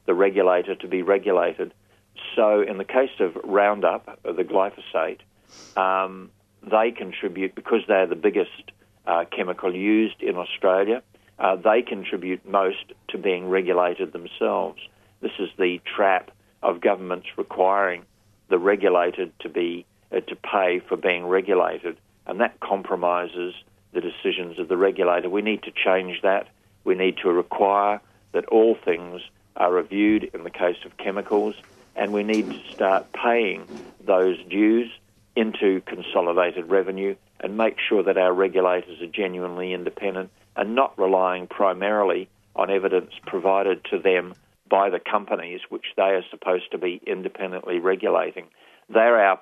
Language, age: English, 50-69